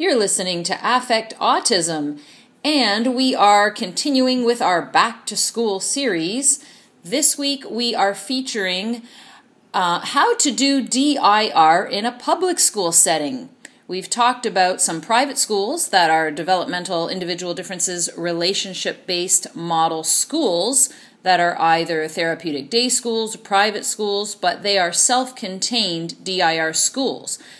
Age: 40-59